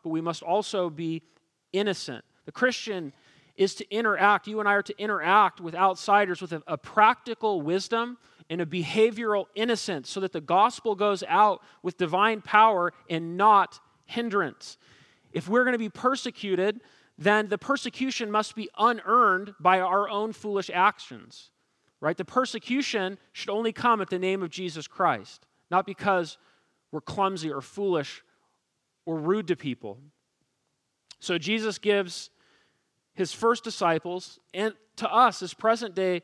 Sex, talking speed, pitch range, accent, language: male, 150 wpm, 165-210 Hz, American, English